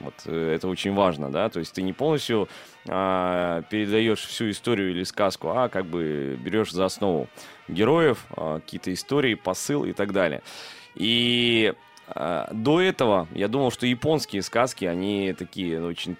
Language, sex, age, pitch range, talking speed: Russian, male, 20-39, 100-130 Hz, 155 wpm